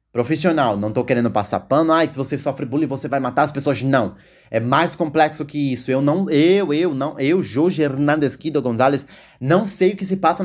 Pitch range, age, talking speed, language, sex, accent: 135-165 Hz, 20-39, 220 wpm, Portuguese, male, Brazilian